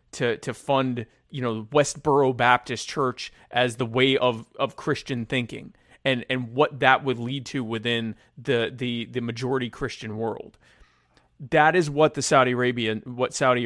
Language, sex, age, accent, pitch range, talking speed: English, male, 30-49, American, 115-140 Hz, 165 wpm